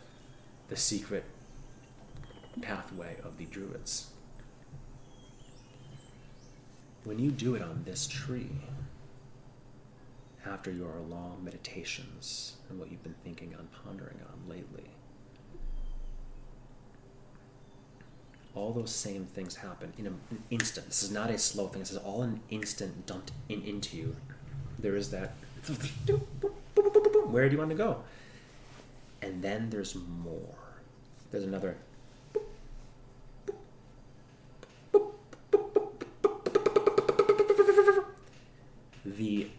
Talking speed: 105 wpm